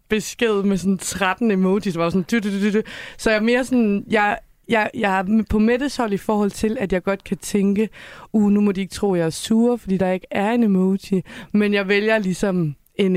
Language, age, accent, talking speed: Danish, 30-49, native, 235 wpm